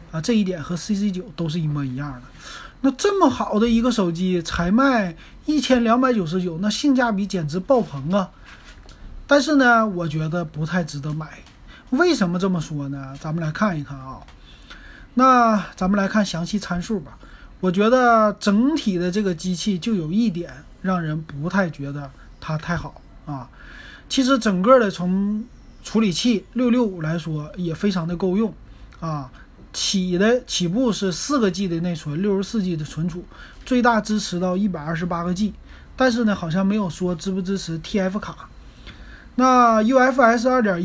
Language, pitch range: Chinese, 170-225 Hz